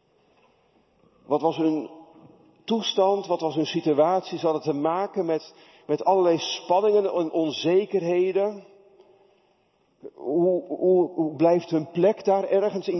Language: Dutch